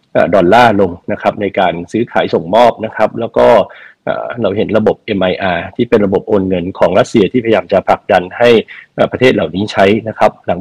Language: Thai